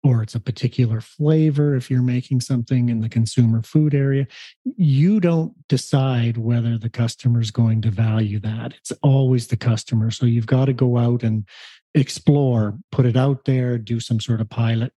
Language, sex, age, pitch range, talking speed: English, male, 40-59, 115-135 Hz, 185 wpm